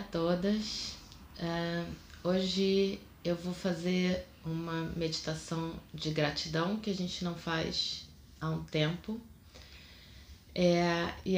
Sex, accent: female, Brazilian